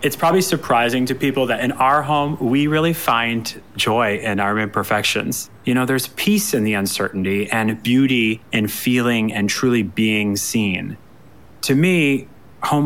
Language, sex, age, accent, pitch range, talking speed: English, male, 30-49, American, 105-130 Hz, 160 wpm